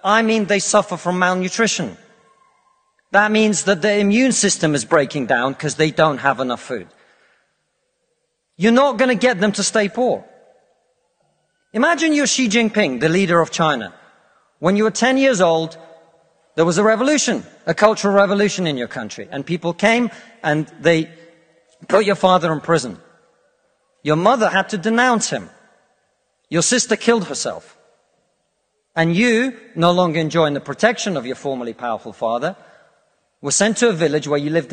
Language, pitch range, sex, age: English, 160-225 Hz, male, 40-59